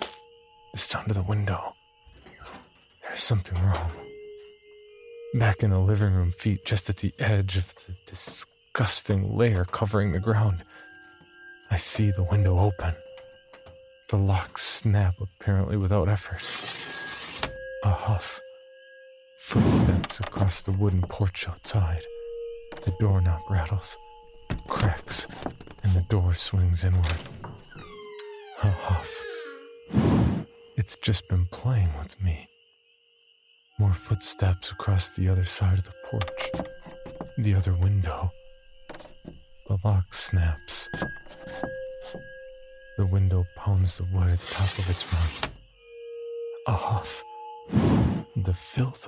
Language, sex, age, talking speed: English, male, 40-59, 110 wpm